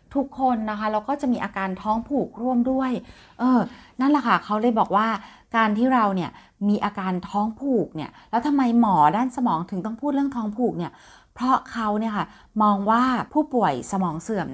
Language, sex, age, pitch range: Thai, female, 30-49, 170-225 Hz